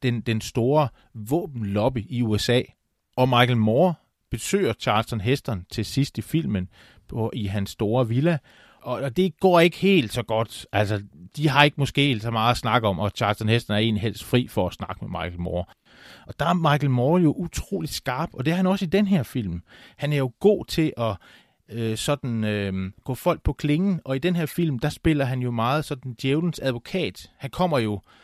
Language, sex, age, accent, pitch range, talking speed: Danish, male, 30-49, native, 105-140 Hz, 210 wpm